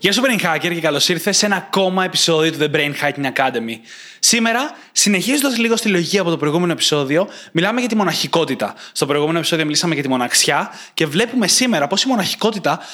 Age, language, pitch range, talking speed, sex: 20-39, Greek, 150-200 Hz, 190 wpm, male